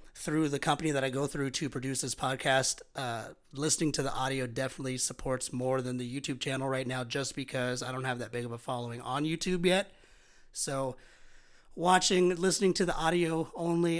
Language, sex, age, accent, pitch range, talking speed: English, male, 30-49, American, 130-170 Hz, 195 wpm